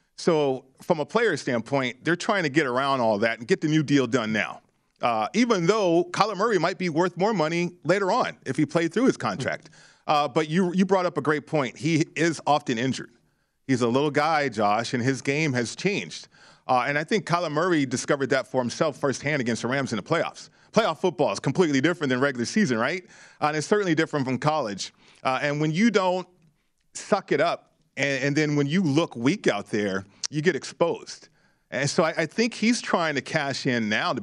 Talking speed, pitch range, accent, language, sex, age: 215 wpm, 135-180 Hz, American, English, male, 40-59